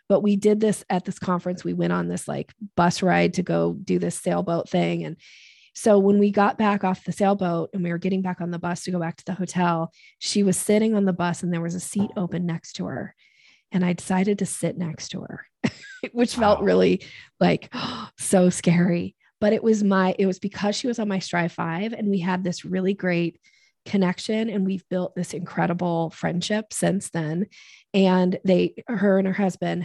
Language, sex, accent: English, female, American